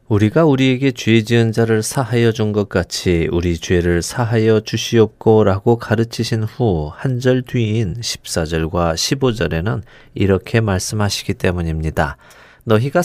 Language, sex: Korean, male